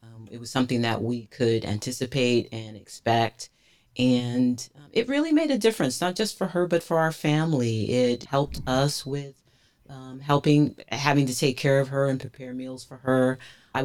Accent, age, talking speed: American, 40-59, 180 wpm